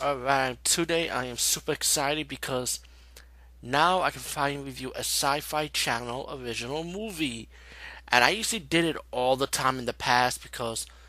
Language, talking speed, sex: English, 155 wpm, male